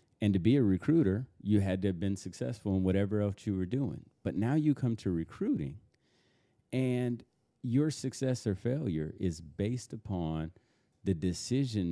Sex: male